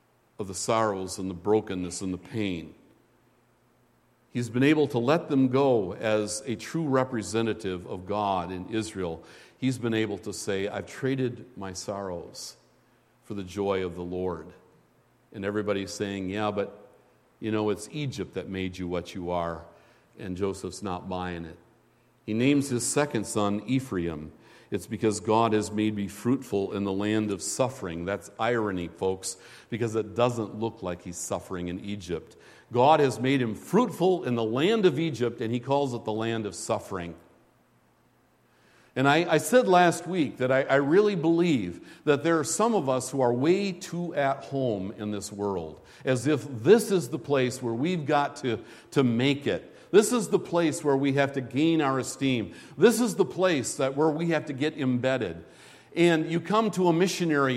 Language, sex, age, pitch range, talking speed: English, male, 50-69, 100-145 Hz, 180 wpm